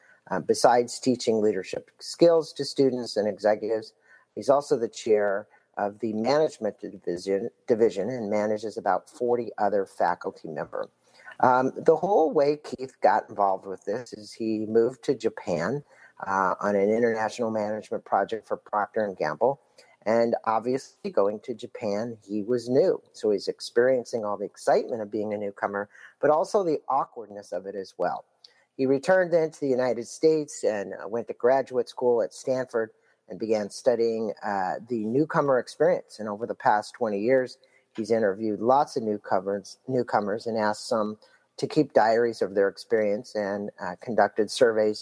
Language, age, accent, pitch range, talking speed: English, 50-69, American, 105-145 Hz, 160 wpm